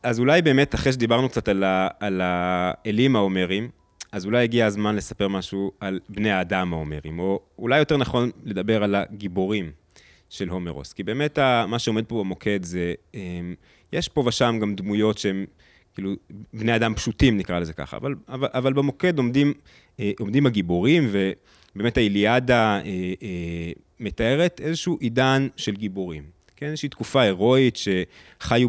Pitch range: 95-120 Hz